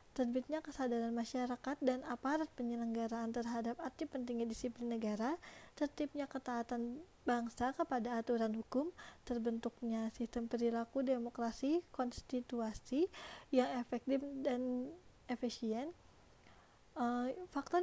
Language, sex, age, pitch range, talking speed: Indonesian, female, 20-39, 235-265 Hz, 95 wpm